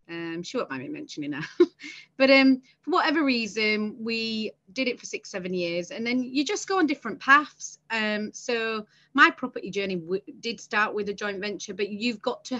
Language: English